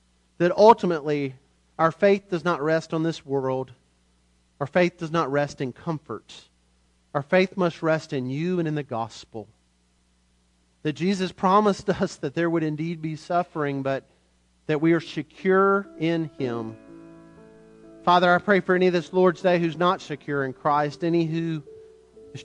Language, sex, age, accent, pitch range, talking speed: English, male, 40-59, American, 135-175 Hz, 165 wpm